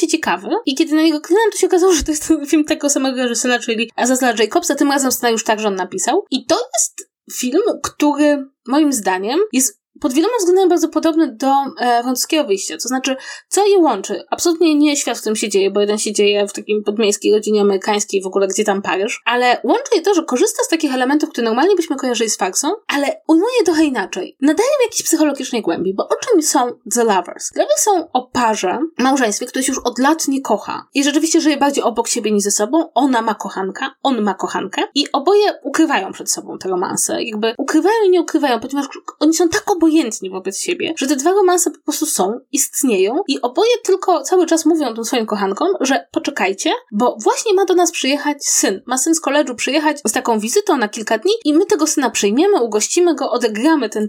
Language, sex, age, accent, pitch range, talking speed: Polish, female, 20-39, native, 230-335 Hz, 215 wpm